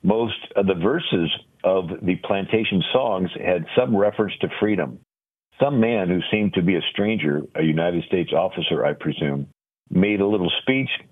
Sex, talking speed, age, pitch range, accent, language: male, 165 wpm, 50-69, 85-105 Hz, American, English